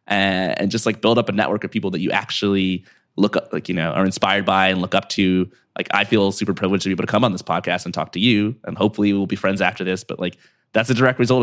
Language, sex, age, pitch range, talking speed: English, male, 20-39, 95-110 Hz, 285 wpm